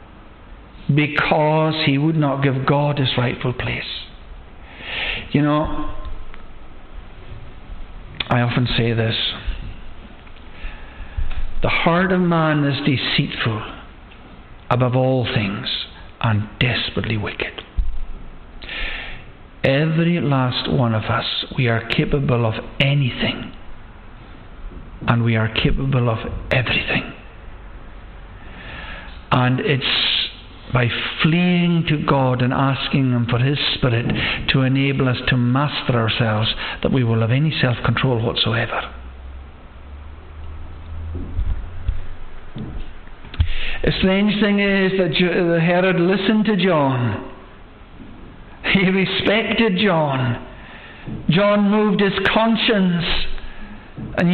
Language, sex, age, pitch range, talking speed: English, male, 60-79, 105-165 Hz, 95 wpm